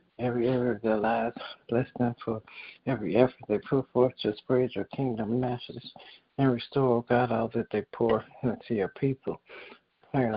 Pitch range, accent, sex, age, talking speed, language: 115-130 Hz, American, male, 60-79, 175 wpm, English